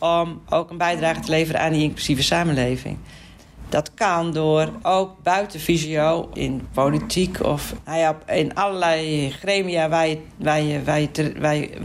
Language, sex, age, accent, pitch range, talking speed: Dutch, female, 40-59, Dutch, 140-175 Hz, 150 wpm